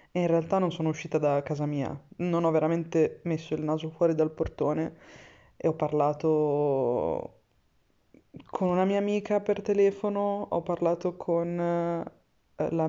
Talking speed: 140 wpm